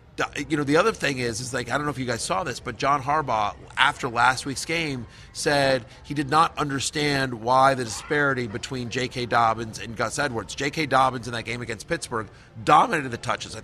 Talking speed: 210 wpm